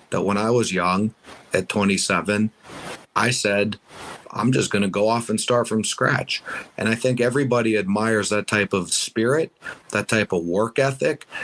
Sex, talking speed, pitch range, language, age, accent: male, 170 wpm, 95-115 Hz, English, 50-69, American